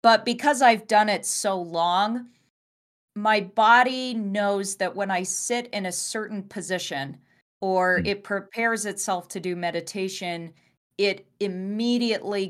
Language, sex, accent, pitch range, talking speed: English, female, American, 175-210 Hz, 130 wpm